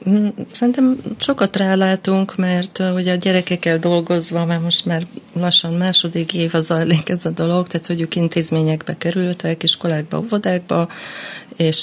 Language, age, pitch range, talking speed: Hungarian, 20-39, 145-170 Hz, 135 wpm